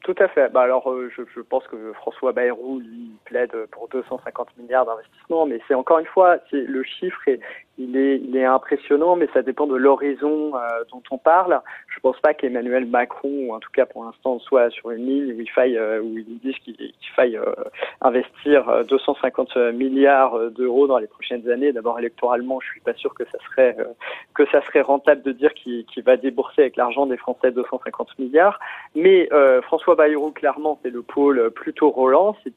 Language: French